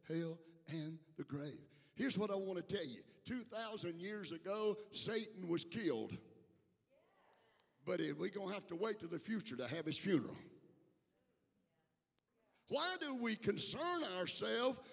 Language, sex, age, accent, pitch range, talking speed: English, male, 50-69, American, 195-260 Hz, 140 wpm